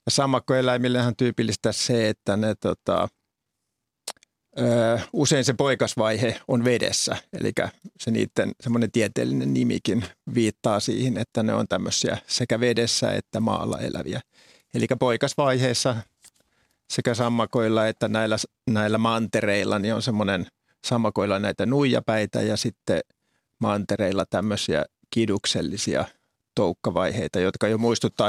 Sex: male